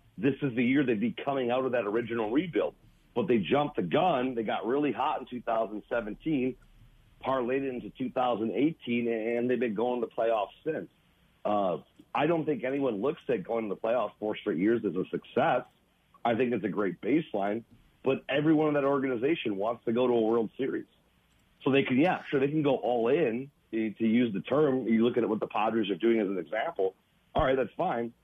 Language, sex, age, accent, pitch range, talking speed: English, male, 40-59, American, 115-140 Hz, 210 wpm